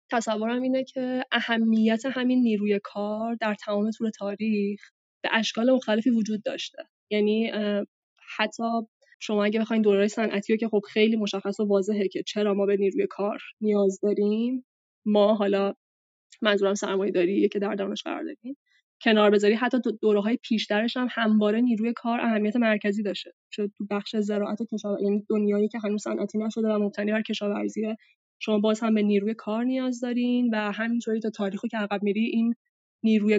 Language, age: Persian, 10-29